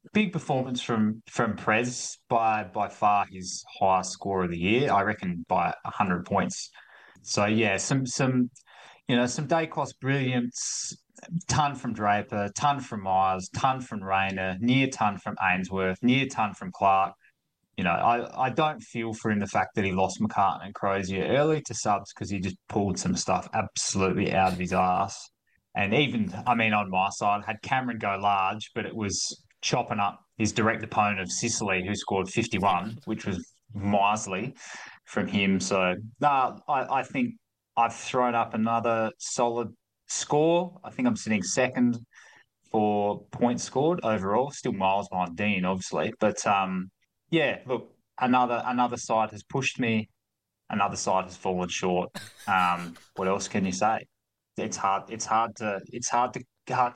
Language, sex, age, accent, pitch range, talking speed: English, male, 20-39, Australian, 95-125 Hz, 170 wpm